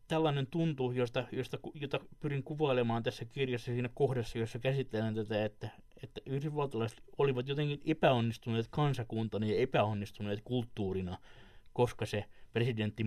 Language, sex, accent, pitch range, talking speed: Finnish, male, native, 110-135 Hz, 115 wpm